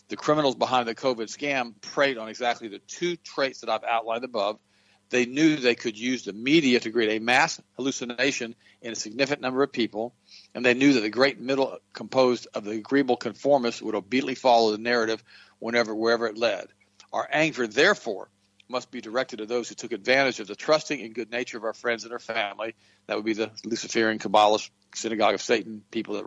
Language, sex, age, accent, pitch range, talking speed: English, male, 50-69, American, 105-130 Hz, 205 wpm